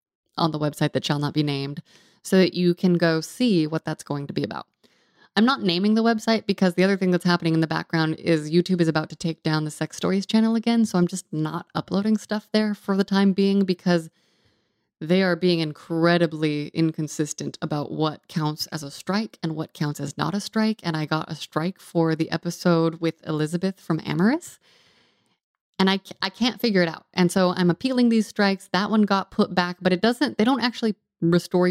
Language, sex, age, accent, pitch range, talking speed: English, female, 20-39, American, 160-195 Hz, 215 wpm